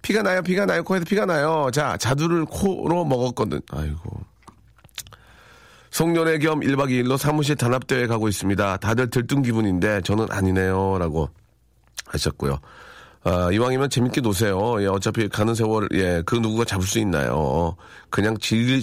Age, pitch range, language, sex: 40-59, 95-135 Hz, Korean, male